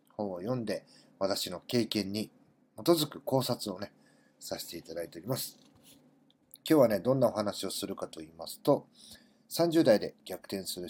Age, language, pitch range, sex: 40-59, Japanese, 115-165 Hz, male